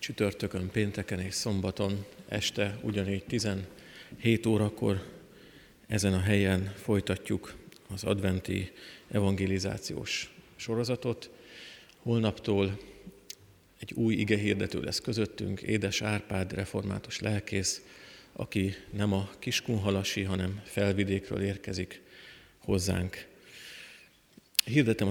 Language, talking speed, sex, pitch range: Hungarian, 85 wpm, male, 95-110 Hz